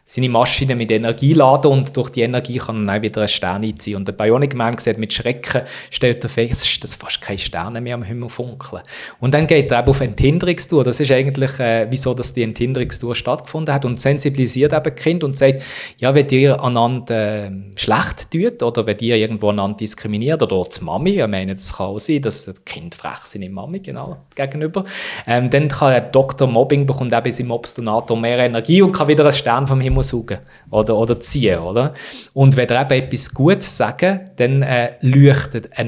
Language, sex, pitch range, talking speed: German, male, 110-140 Hz, 195 wpm